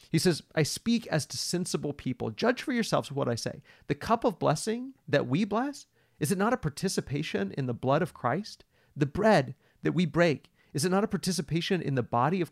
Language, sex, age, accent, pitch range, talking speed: English, male, 40-59, American, 130-180 Hz, 215 wpm